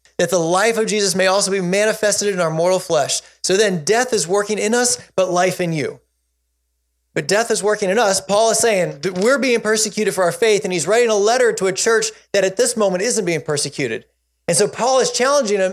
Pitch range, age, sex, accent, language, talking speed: 125-210 Hz, 20-39, male, American, English, 230 wpm